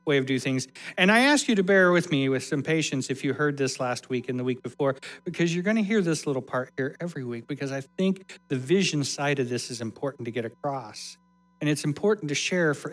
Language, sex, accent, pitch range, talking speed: English, male, American, 145-190 Hz, 255 wpm